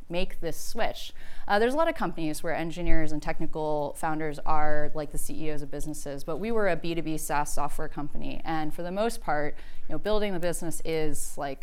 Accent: American